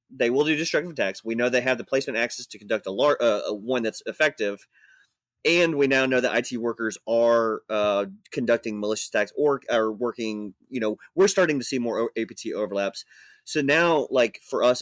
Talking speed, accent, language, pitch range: 205 wpm, American, English, 110-140 Hz